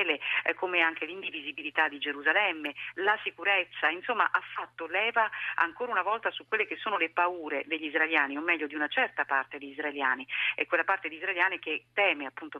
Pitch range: 150-195 Hz